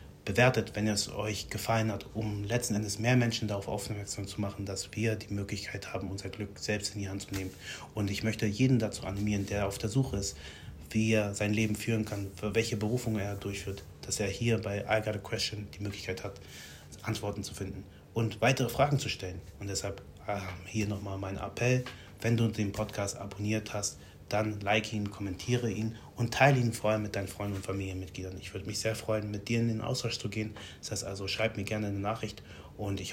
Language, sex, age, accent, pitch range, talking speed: German, male, 30-49, German, 95-110 Hz, 210 wpm